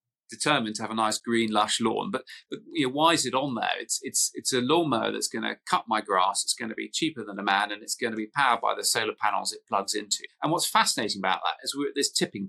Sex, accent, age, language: male, British, 30-49, English